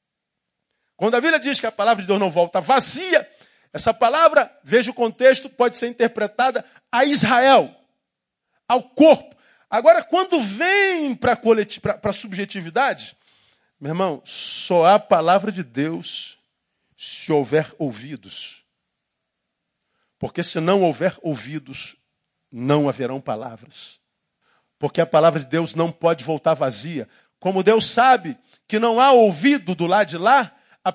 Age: 50-69